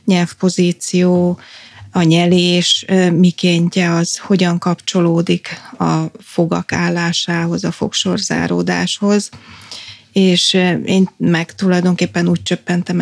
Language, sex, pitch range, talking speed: Hungarian, female, 170-185 Hz, 85 wpm